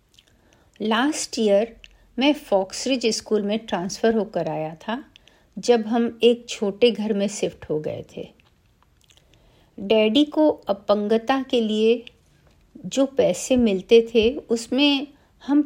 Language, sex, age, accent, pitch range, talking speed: Hindi, female, 50-69, native, 195-255 Hz, 120 wpm